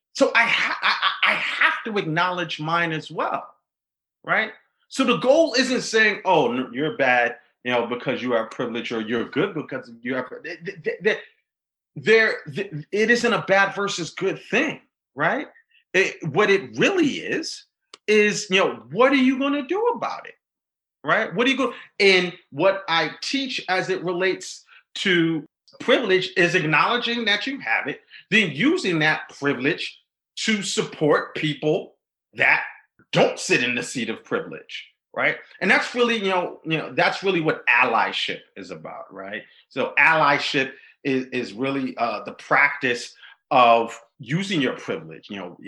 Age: 40-59